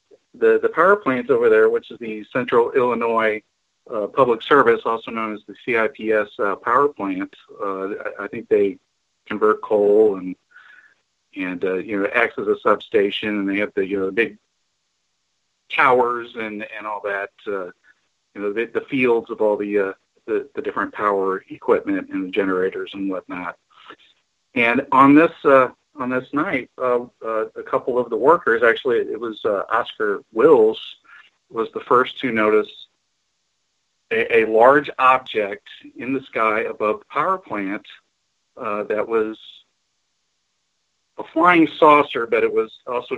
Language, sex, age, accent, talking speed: English, male, 40-59, American, 165 wpm